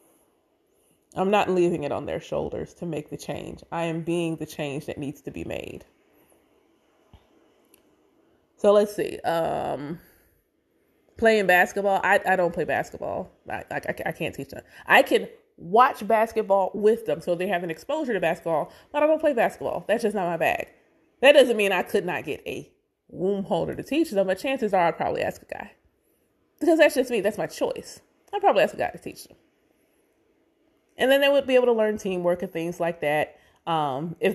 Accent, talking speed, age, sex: American, 195 wpm, 20-39, female